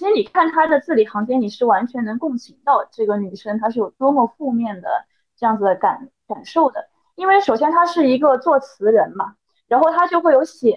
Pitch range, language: 230-335 Hz, Chinese